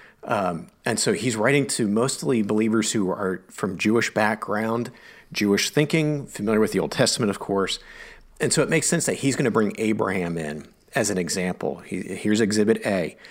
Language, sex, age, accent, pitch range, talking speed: English, male, 40-59, American, 100-150 Hz, 180 wpm